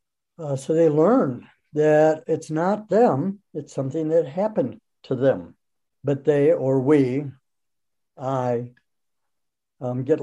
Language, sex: English, male